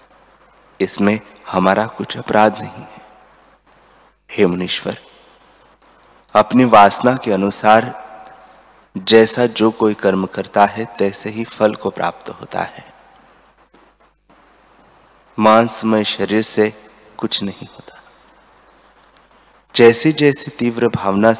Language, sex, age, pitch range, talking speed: Hindi, male, 30-49, 100-120 Hz, 100 wpm